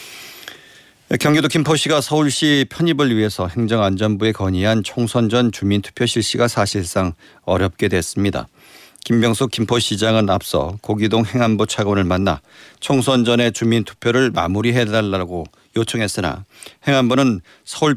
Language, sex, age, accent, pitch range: Korean, male, 40-59, native, 100-125 Hz